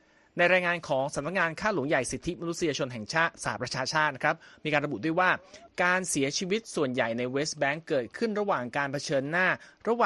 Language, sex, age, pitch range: Thai, male, 30-49, 130-165 Hz